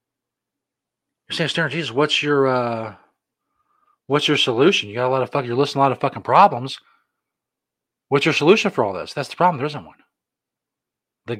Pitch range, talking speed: 135-185 Hz, 190 wpm